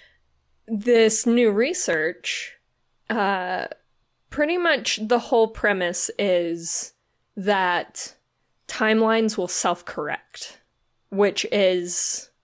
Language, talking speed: English, 75 wpm